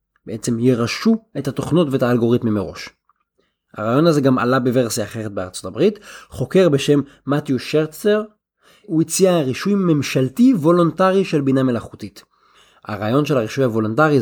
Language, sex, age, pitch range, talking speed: Hebrew, male, 20-39, 120-160 Hz, 130 wpm